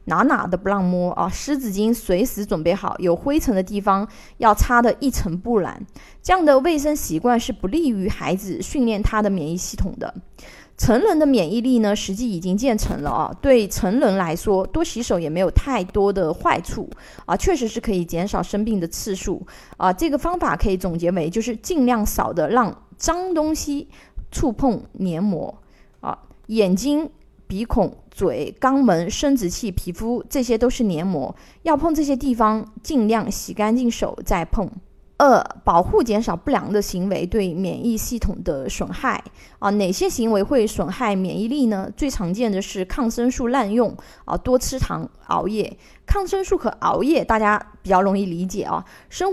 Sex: female